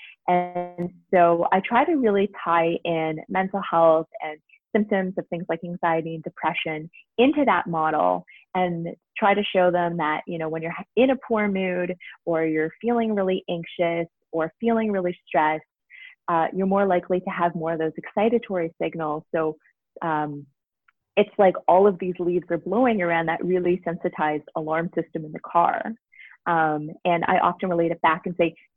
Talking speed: 175 wpm